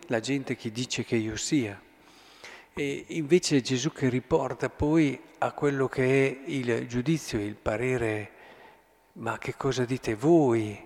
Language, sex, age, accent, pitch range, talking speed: Italian, male, 50-69, native, 120-145 Hz, 145 wpm